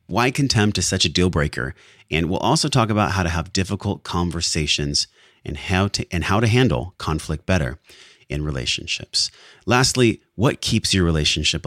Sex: male